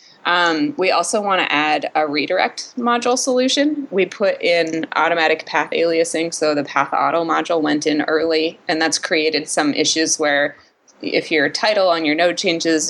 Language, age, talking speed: English, 20-39, 170 wpm